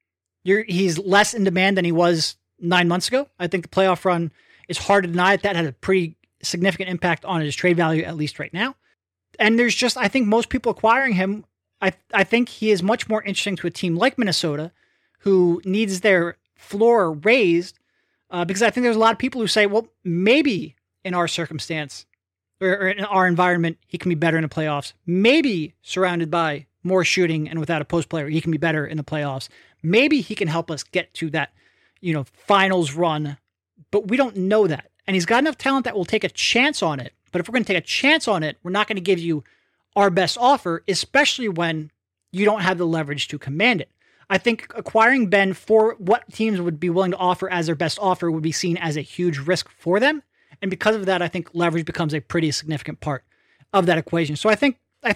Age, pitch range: 30-49, 165-210 Hz